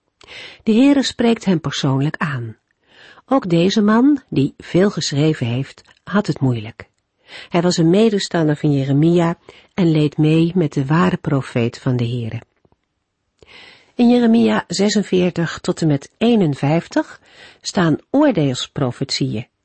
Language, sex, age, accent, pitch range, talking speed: Dutch, female, 50-69, Dutch, 135-200 Hz, 125 wpm